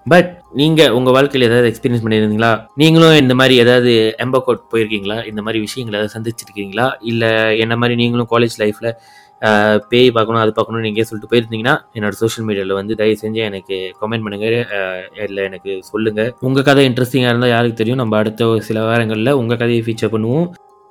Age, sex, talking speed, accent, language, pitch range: 20-39, male, 170 wpm, native, Tamil, 110-135 Hz